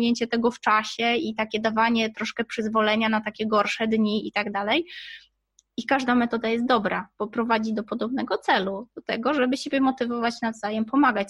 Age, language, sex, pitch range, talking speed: 20-39, Polish, female, 225-260 Hz, 170 wpm